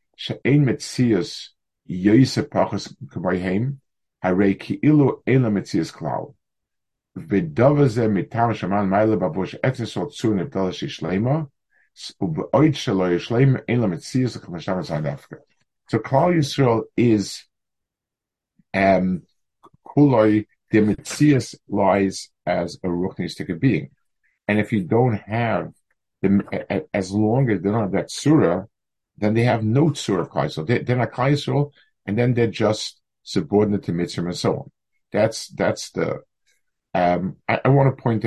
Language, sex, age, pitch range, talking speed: English, male, 50-69, 95-130 Hz, 90 wpm